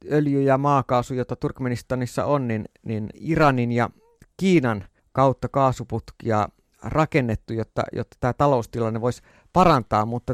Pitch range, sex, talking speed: 120-150 Hz, male, 120 wpm